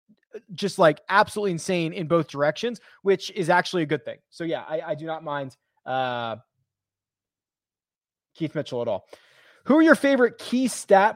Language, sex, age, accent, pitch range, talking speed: English, male, 20-39, American, 145-200 Hz, 165 wpm